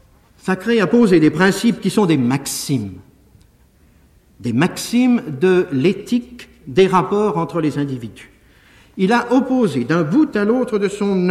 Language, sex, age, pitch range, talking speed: French, male, 50-69, 130-195 Hz, 145 wpm